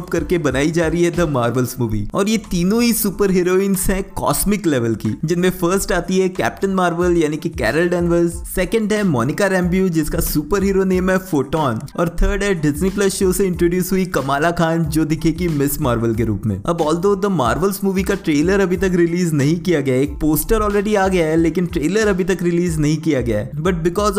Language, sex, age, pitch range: Hindi, male, 20-39, 160-195 Hz